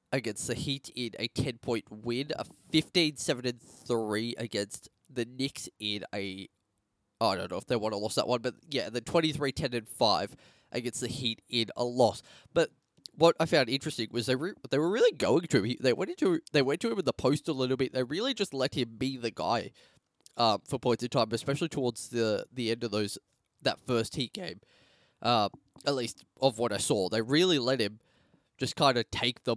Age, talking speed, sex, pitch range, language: 10-29, 205 wpm, male, 110-135 Hz, English